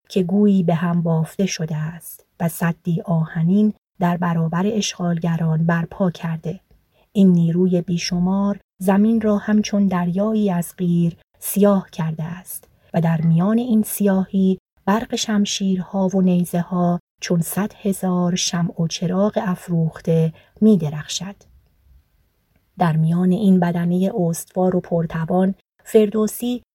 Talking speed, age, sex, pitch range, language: 120 wpm, 30-49, female, 170-200 Hz, Persian